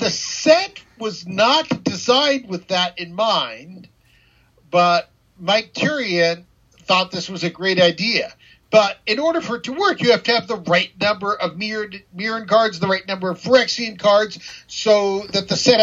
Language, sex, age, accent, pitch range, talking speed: English, male, 50-69, American, 175-220 Hz, 175 wpm